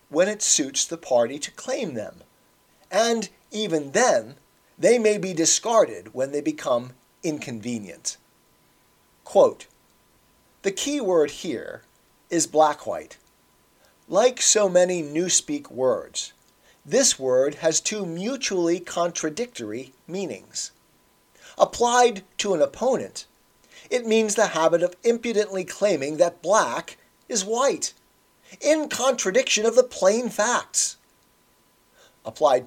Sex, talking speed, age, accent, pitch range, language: male, 110 wpm, 40-59, American, 165-245 Hz, English